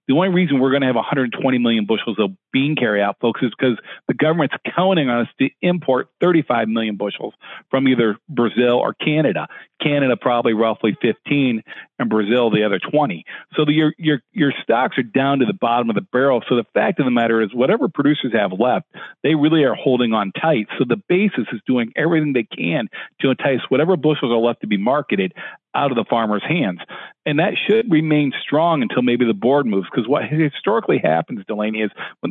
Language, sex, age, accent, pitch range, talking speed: English, male, 40-59, American, 115-150 Hz, 200 wpm